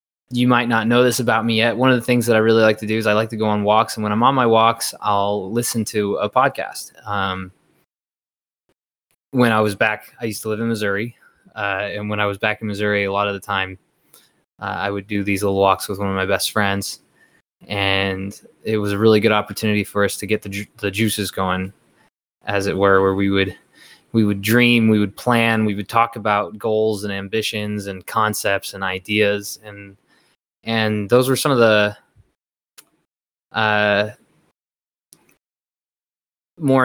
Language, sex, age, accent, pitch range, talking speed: English, male, 20-39, American, 100-115 Hz, 195 wpm